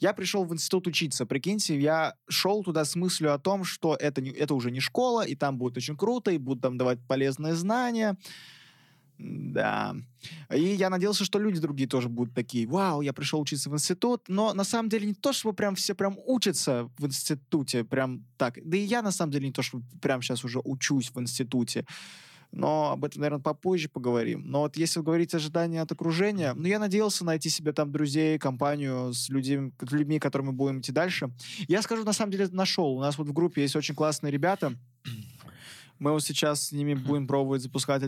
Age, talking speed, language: 20-39, 205 wpm, Russian